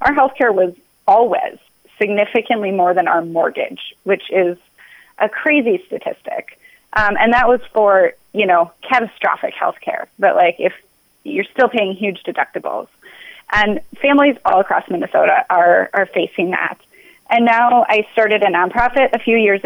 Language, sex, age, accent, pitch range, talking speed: English, female, 30-49, American, 190-240 Hz, 150 wpm